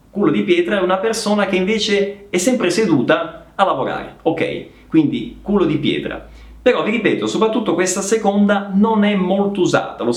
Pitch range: 160-205 Hz